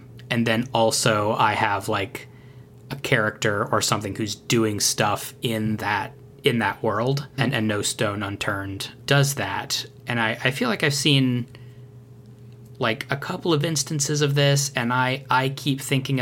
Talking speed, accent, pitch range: 165 wpm, American, 105-125 Hz